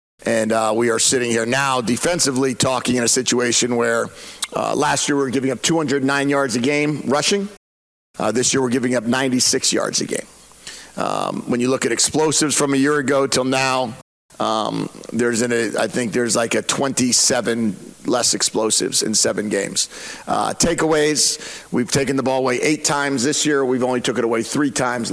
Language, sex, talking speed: English, male, 190 wpm